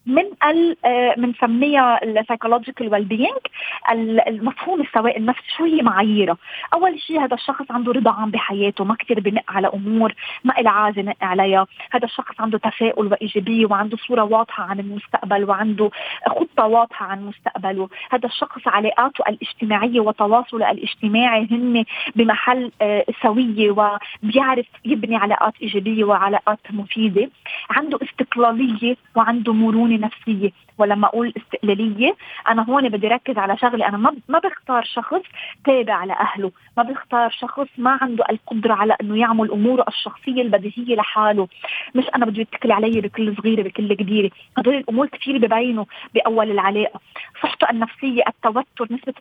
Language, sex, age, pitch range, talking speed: Arabic, female, 20-39, 215-250 Hz, 140 wpm